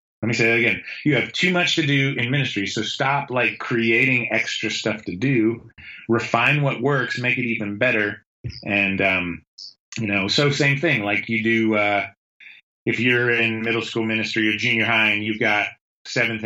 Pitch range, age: 105-125 Hz, 30-49